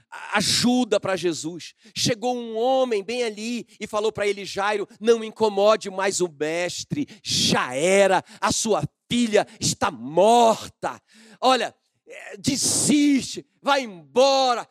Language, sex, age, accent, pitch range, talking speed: Portuguese, male, 40-59, Brazilian, 185-250 Hz, 120 wpm